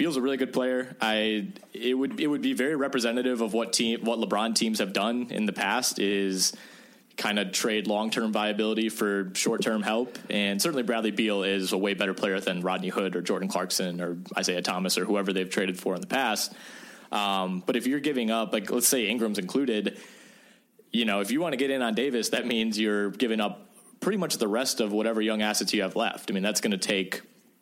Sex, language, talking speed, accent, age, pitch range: male, English, 220 wpm, American, 20-39, 100-120 Hz